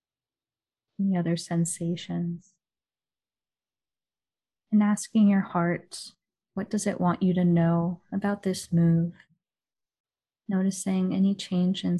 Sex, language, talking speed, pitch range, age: female, English, 105 wpm, 170-195 Hz, 20-39